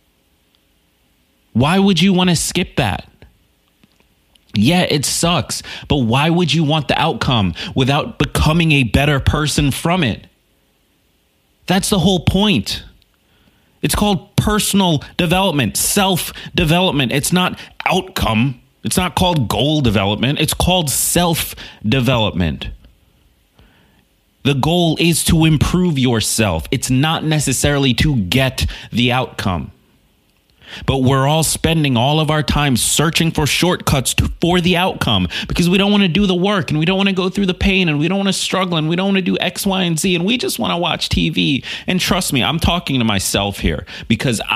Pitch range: 110-175 Hz